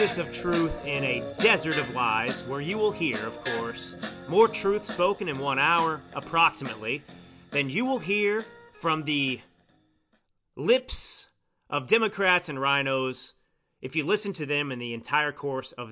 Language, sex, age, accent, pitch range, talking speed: English, male, 30-49, American, 130-195 Hz, 155 wpm